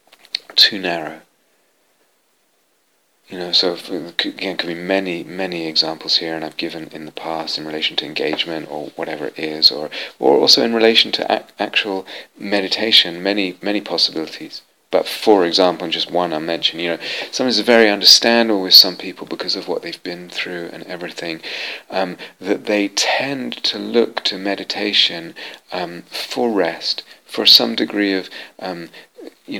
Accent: British